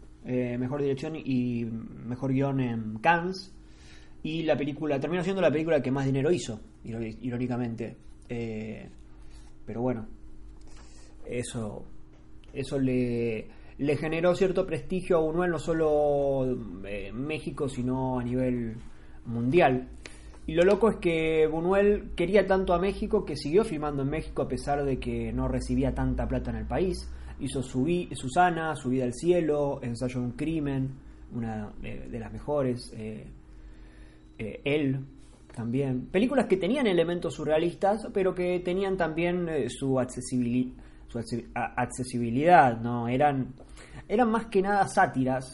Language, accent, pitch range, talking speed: Spanish, Argentinian, 120-155 Hz, 140 wpm